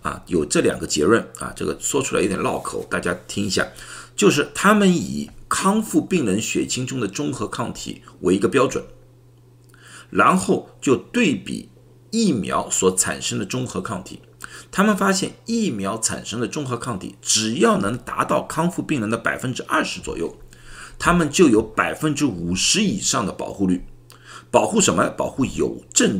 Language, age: Chinese, 50-69